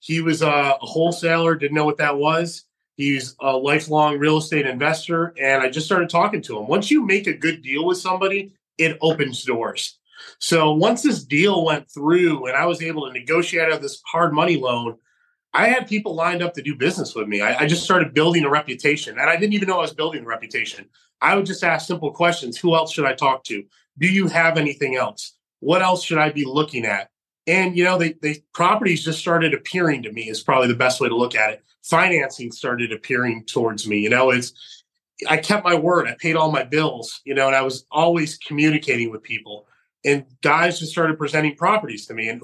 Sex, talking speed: male, 220 wpm